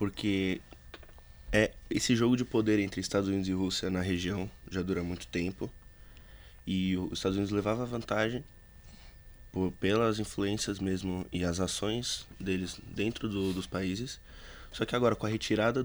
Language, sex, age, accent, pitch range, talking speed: English, male, 20-39, Brazilian, 90-105 Hz, 160 wpm